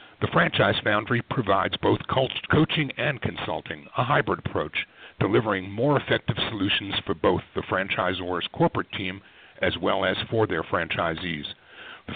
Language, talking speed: English, 140 wpm